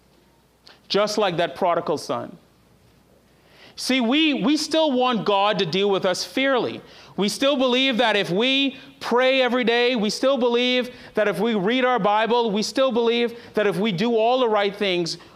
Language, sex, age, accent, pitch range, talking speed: English, male, 40-59, American, 160-220 Hz, 175 wpm